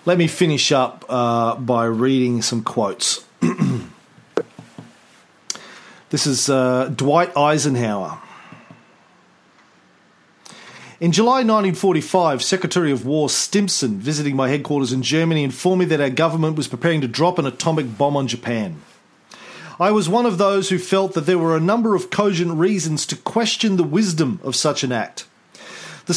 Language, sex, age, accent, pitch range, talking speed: English, male, 40-59, Australian, 140-190 Hz, 145 wpm